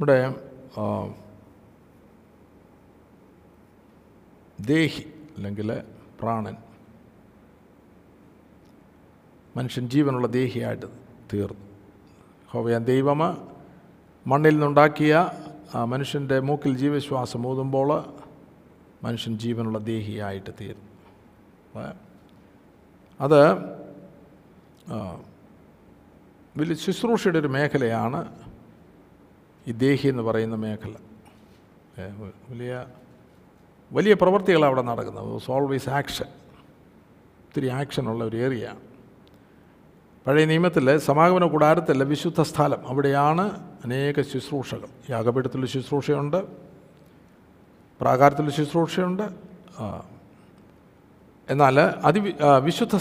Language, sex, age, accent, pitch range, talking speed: Malayalam, male, 50-69, native, 110-150 Hz, 65 wpm